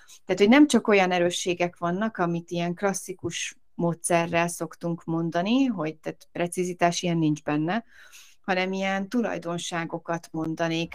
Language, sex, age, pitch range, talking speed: Hungarian, female, 30-49, 170-195 Hz, 125 wpm